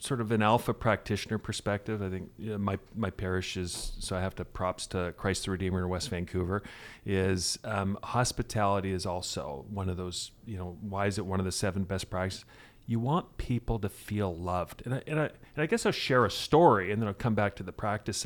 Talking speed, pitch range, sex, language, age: 230 wpm, 95-115 Hz, male, English, 40-59